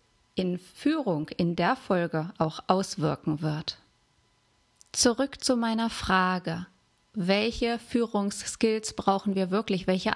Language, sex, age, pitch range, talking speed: German, female, 30-49, 195-225 Hz, 105 wpm